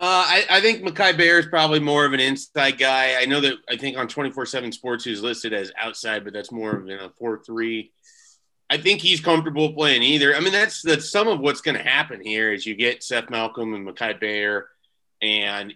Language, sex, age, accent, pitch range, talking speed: English, male, 30-49, American, 110-155 Hz, 220 wpm